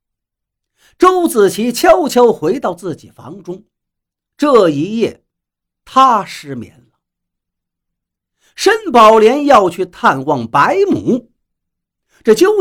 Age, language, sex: 50-69, Chinese, male